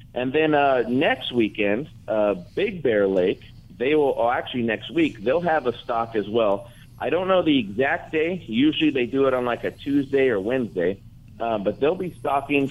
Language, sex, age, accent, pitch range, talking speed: English, male, 50-69, American, 115-150 Hz, 200 wpm